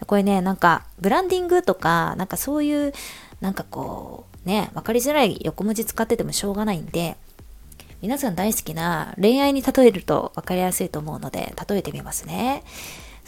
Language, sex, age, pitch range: Japanese, female, 20-39, 165-255 Hz